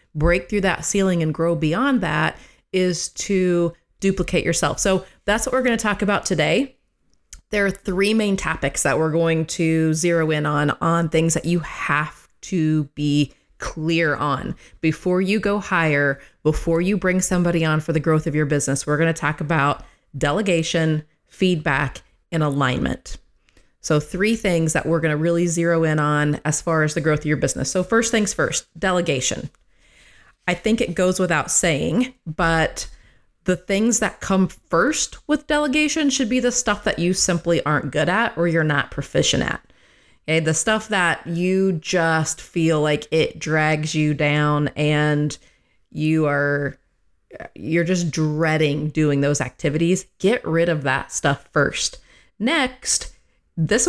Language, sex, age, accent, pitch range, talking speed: English, female, 30-49, American, 150-190 Hz, 160 wpm